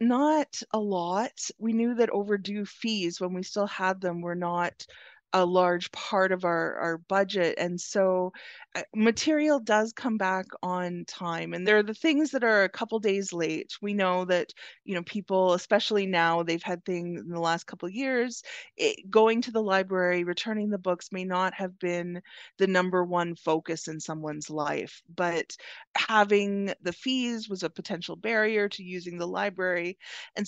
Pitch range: 170-210 Hz